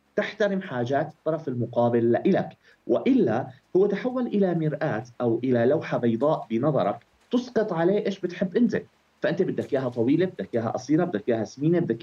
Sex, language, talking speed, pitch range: male, Arabic, 155 wpm, 120-190 Hz